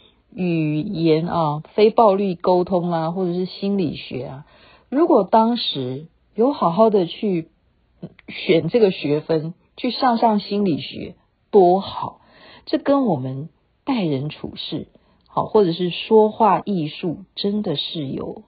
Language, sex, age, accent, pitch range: Chinese, female, 50-69, native, 150-210 Hz